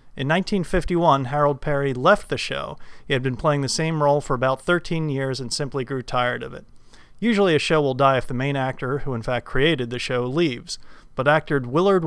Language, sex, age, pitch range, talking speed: English, male, 40-59, 130-155 Hz, 215 wpm